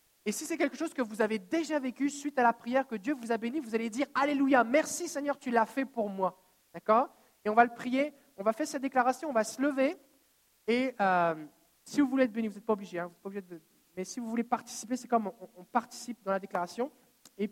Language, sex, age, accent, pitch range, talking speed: French, male, 50-69, French, 230-290 Hz, 255 wpm